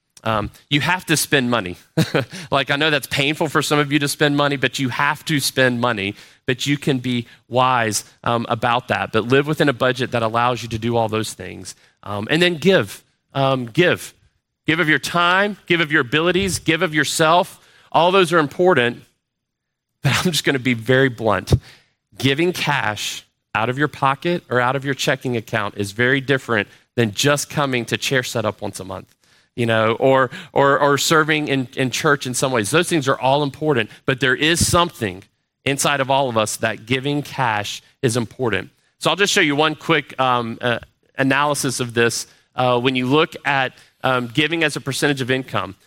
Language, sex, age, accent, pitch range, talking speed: English, male, 30-49, American, 120-155 Hz, 200 wpm